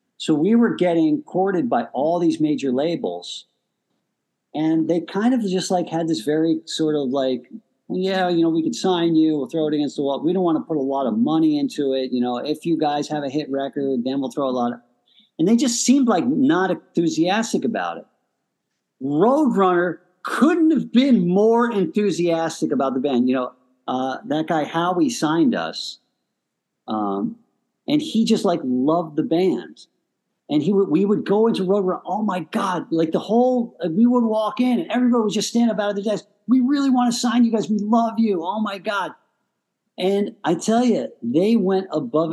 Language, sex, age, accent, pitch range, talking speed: English, male, 50-69, American, 150-230 Hz, 205 wpm